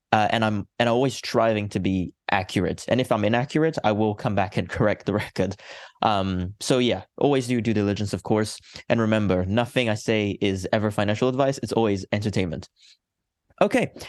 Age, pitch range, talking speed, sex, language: 20-39, 100-125 Hz, 185 wpm, male, English